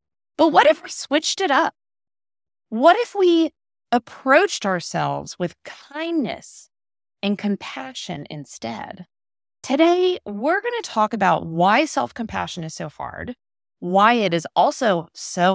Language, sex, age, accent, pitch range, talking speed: English, female, 30-49, American, 175-275 Hz, 125 wpm